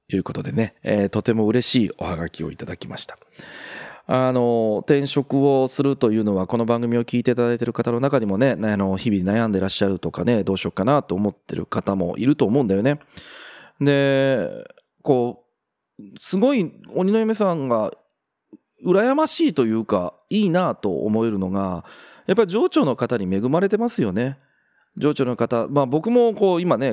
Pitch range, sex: 100-150 Hz, male